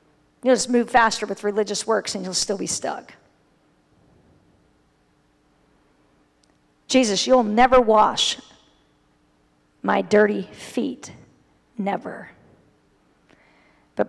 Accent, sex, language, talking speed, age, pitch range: American, female, English, 90 wpm, 40-59, 205-285 Hz